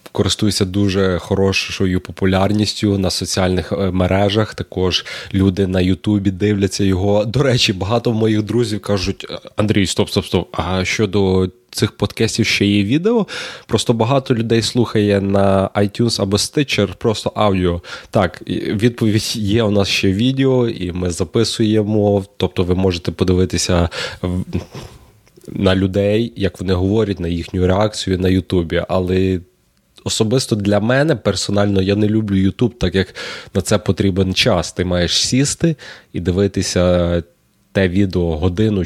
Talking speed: 135 wpm